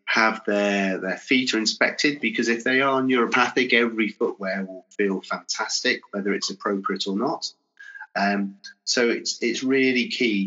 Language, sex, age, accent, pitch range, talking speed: English, male, 30-49, British, 100-130 Hz, 155 wpm